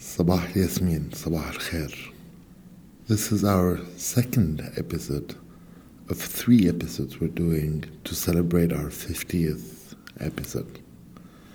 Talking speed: 100 wpm